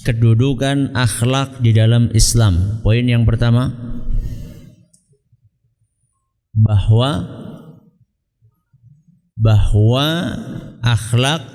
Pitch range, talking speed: 110-135 Hz, 55 wpm